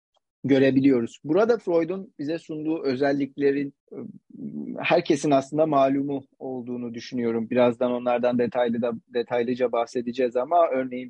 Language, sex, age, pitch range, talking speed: Turkish, male, 40-59, 120-140 Hz, 105 wpm